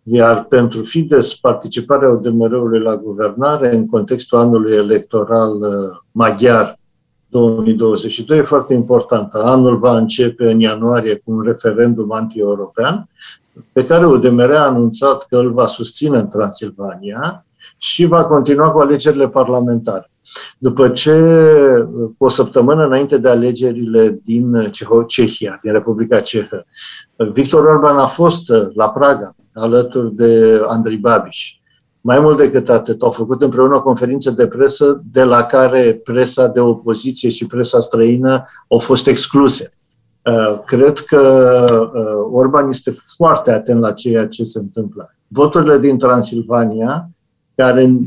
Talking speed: 125 wpm